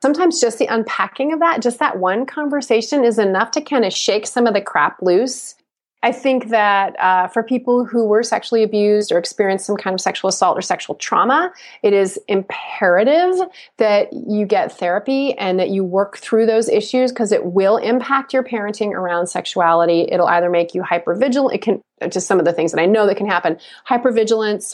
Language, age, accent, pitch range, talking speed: English, 30-49, American, 180-235 Hz, 200 wpm